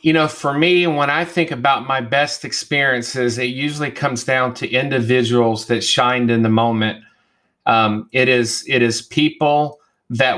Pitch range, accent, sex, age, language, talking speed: 120-140 Hz, American, male, 40-59, English, 170 wpm